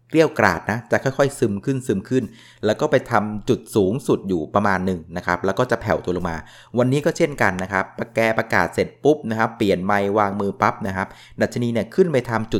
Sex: male